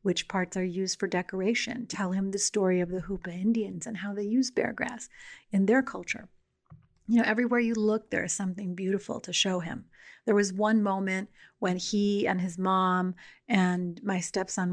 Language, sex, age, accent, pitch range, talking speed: English, female, 40-59, American, 185-210 Hz, 190 wpm